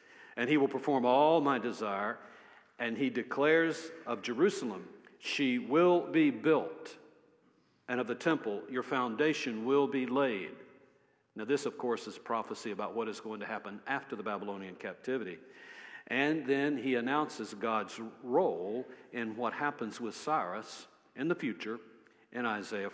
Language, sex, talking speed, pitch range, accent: English, male, 150 wpm, 115-150 Hz, American